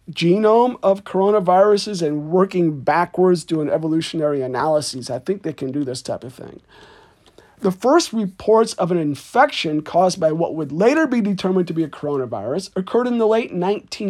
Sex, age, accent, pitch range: male, 50-69, American, 160-225 Hz